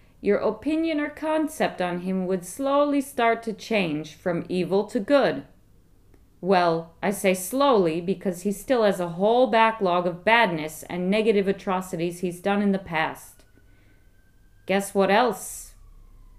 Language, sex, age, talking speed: English, female, 40-59, 145 wpm